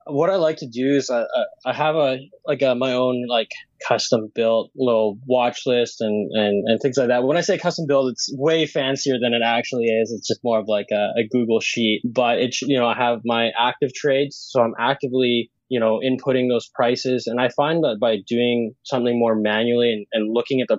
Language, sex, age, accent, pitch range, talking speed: English, male, 20-39, American, 115-135 Hz, 225 wpm